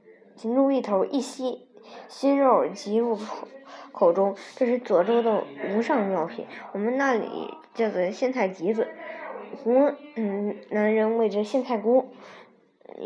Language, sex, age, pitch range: Chinese, male, 20-39, 200-255 Hz